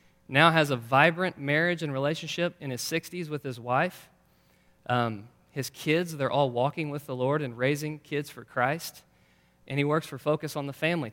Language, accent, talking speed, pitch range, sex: English, American, 190 wpm, 130-160 Hz, male